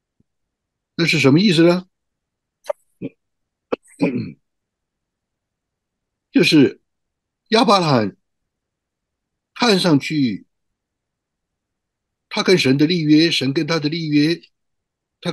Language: Chinese